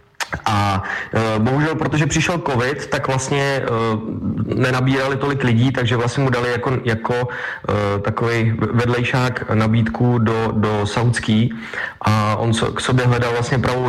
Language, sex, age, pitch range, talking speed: Czech, male, 20-39, 105-120 Hz, 125 wpm